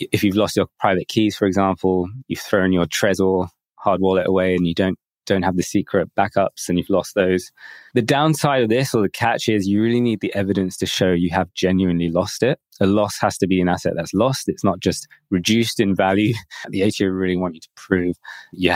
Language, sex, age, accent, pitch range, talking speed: English, male, 20-39, British, 90-110 Hz, 225 wpm